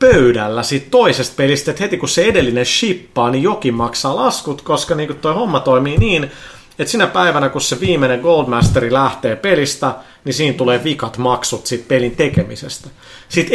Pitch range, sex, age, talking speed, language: 120-155 Hz, male, 30-49, 170 wpm, Finnish